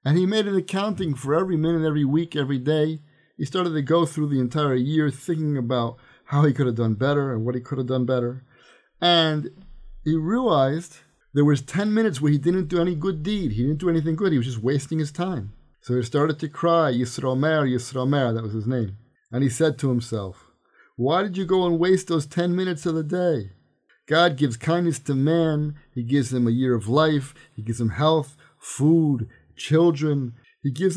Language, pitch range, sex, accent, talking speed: English, 125-170 Hz, male, American, 210 wpm